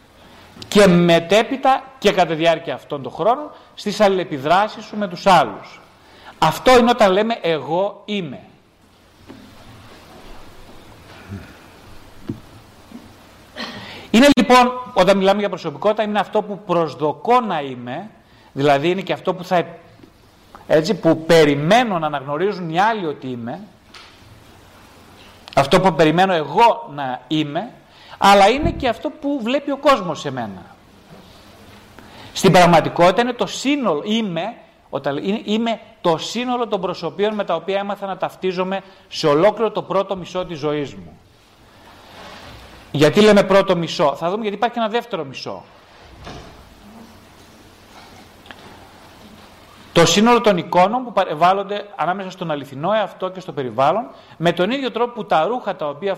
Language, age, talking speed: Greek, 40-59, 130 wpm